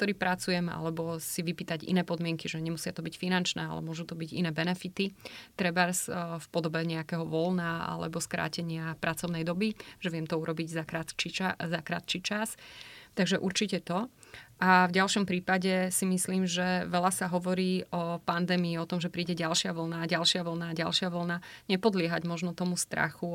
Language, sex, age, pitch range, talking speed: Slovak, female, 30-49, 170-185 Hz, 165 wpm